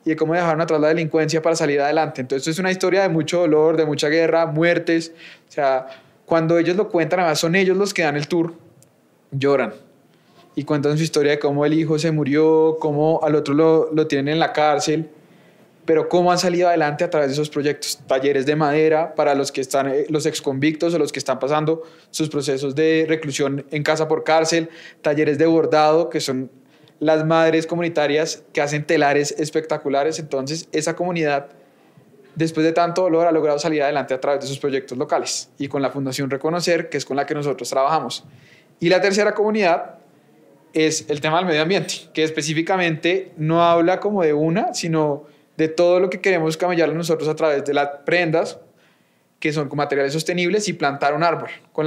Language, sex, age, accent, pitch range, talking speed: Spanish, male, 20-39, Colombian, 145-165 Hz, 195 wpm